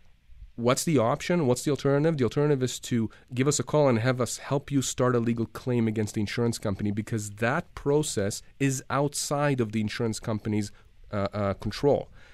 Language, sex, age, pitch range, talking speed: English, male, 30-49, 105-140 Hz, 190 wpm